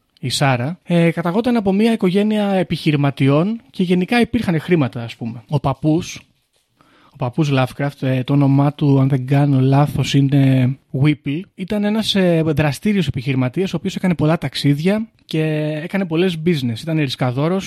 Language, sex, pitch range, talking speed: Greek, male, 135-170 Hz, 155 wpm